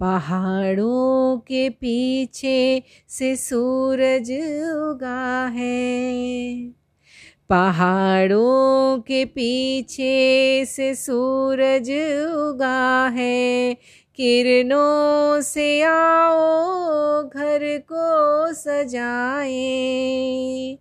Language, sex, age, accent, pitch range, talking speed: Hindi, female, 30-49, native, 255-290 Hz, 60 wpm